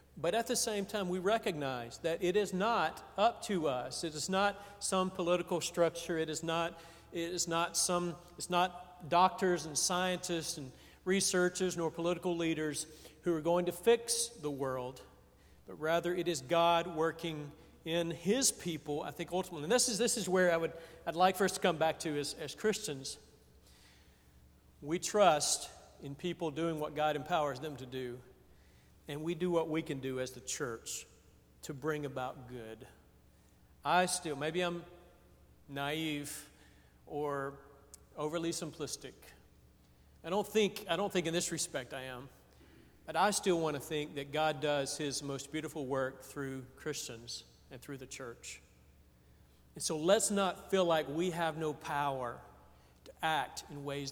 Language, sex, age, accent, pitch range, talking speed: English, male, 50-69, American, 135-175 Hz, 170 wpm